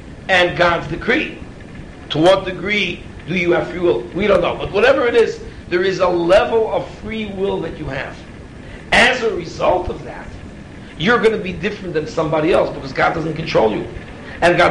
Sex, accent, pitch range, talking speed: male, American, 170-220 Hz, 195 wpm